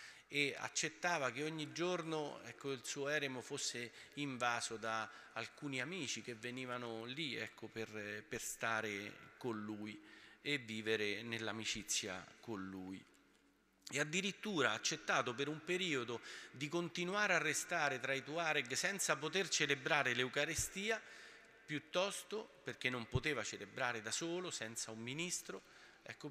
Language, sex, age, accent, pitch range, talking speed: Italian, male, 40-59, native, 115-155 Hz, 130 wpm